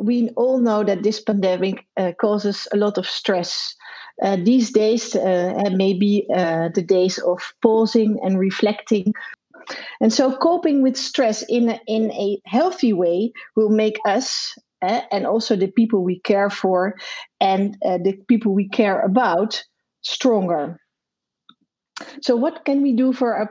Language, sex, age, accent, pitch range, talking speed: English, female, 40-59, Dutch, 195-235 Hz, 160 wpm